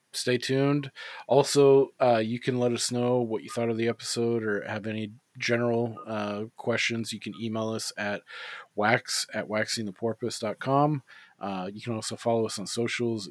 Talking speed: 165 wpm